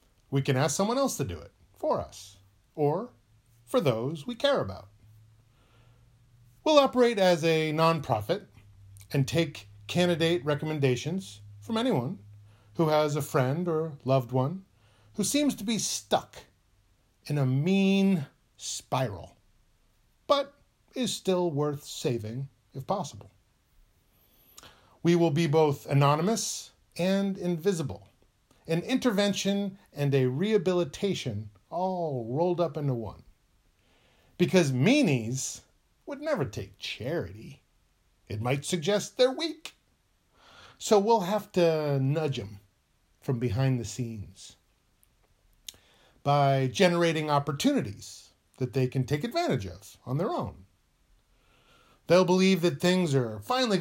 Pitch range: 110-175 Hz